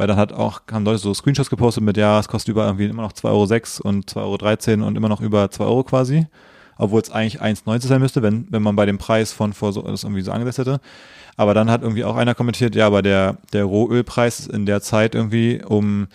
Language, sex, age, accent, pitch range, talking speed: German, male, 20-39, German, 100-120 Hz, 250 wpm